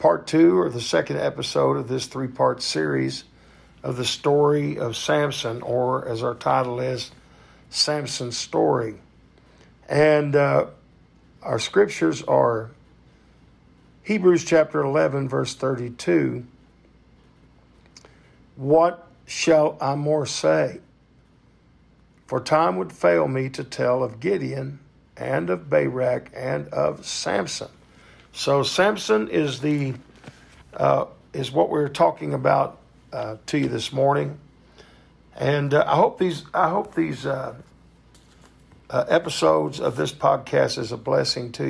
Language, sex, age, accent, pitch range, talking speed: English, male, 50-69, American, 110-150 Hz, 125 wpm